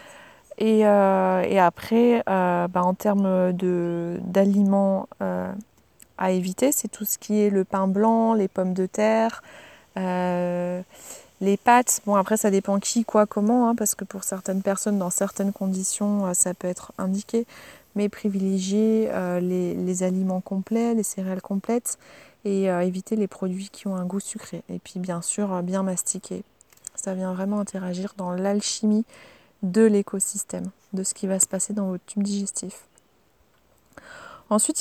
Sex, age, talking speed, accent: female, 30-49, 155 wpm, French